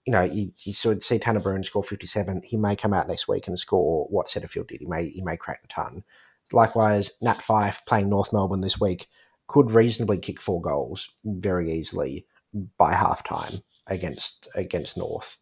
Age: 30-49